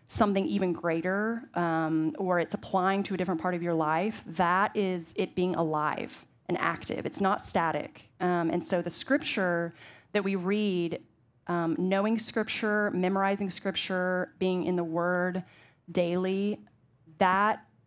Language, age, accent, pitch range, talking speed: English, 30-49, American, 155-195 Hz, 145 wpm